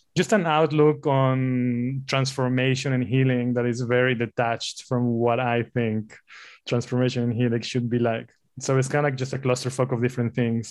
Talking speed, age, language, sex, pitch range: 175 wpm, 20-39, English, male, 120-140 Hz